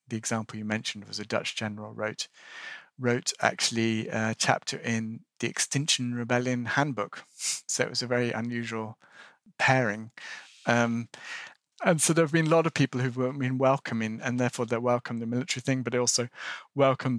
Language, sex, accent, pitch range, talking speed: English, male, British, 110-125 Hz, 170 wpm